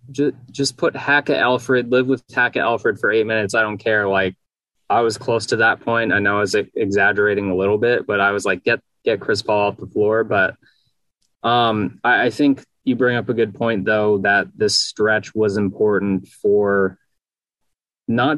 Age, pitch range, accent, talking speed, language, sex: 20-39, 100-120 Hz, American, 195 wpm, English, male